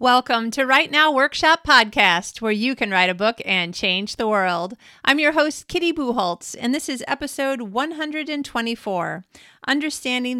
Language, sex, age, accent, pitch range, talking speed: English, female, 40-59, American, 195-250 Hz, 155 wpm